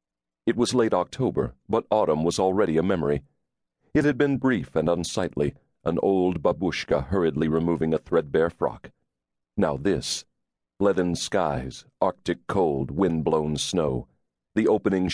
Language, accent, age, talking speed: English, American, 40-59, 135 wpm